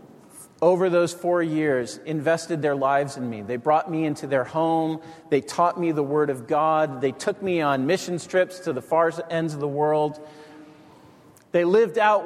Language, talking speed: English, 185 wpm